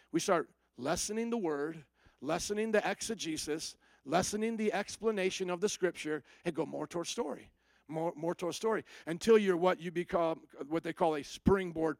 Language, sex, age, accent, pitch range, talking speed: English, male, 50-69, American, 170-215 Hz, 165 wpm